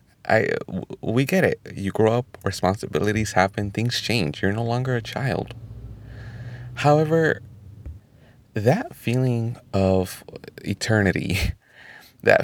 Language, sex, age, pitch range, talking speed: English, male, 30-49, 100-130 Hz, 100 wpm